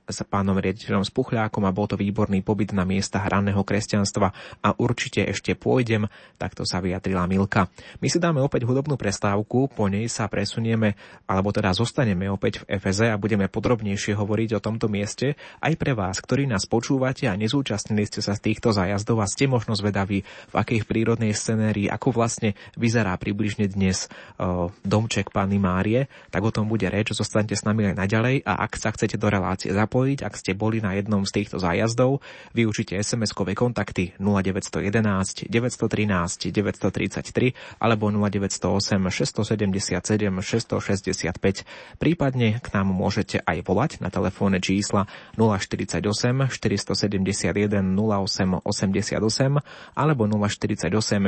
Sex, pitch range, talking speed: male, 95-115 Hz, 145 wpm